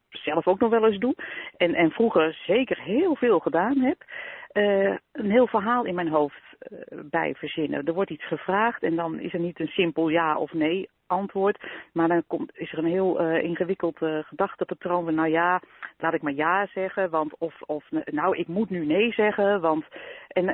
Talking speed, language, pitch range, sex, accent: 200 wpm, Dutch, 160-200 Hz, female, Dutch